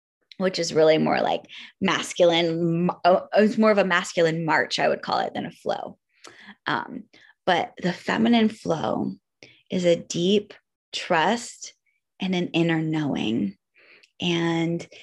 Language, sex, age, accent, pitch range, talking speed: English, female, 20-39, American, 170-230 Hz, 130 wpm